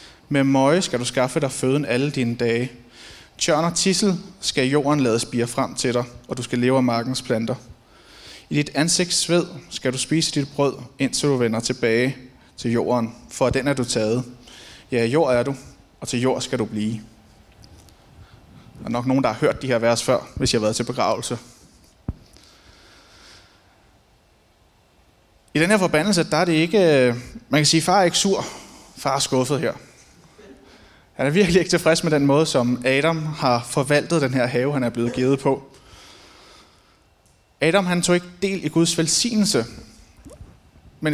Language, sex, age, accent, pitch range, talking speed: Danish, male, 30-49, native, 120-155 Hz, 175 wpm